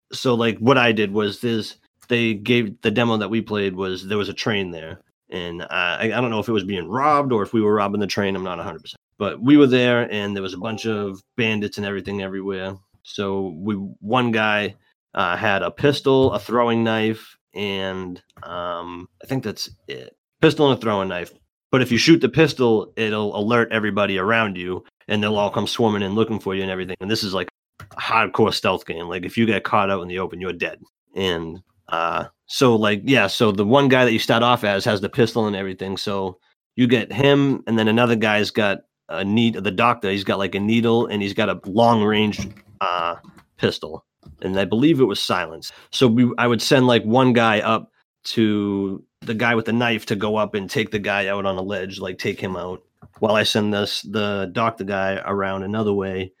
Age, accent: 30-49, American